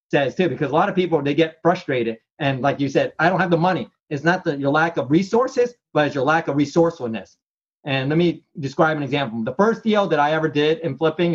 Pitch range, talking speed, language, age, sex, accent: 140-175 Hz, 250 wpm, English, 30-49, male, American